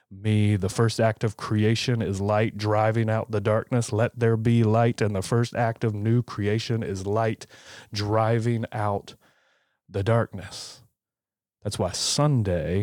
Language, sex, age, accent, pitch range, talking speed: English, male, 30-49, American, 100-125 Hz, 150 wpm